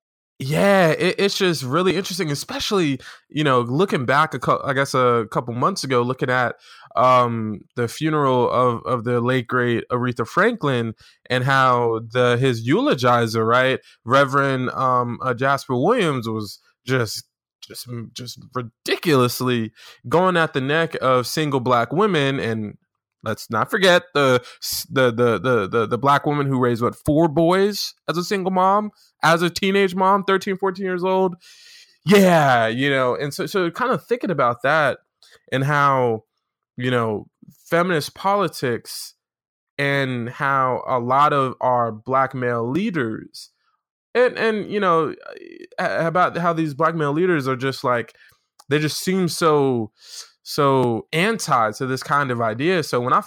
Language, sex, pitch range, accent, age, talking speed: English, male, 125-185 Hz, American, 20-39, 155 wpm